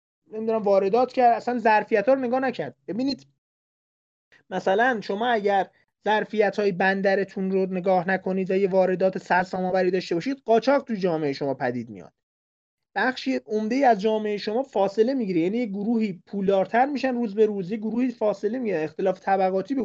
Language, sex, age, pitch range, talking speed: Persian, male, 30-49, 185-240 Hz, 155 wpm